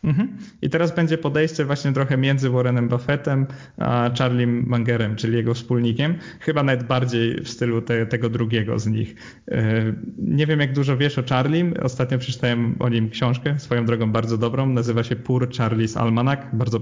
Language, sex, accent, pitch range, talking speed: Polish, male, native, 120-140 Hz, 170 wpm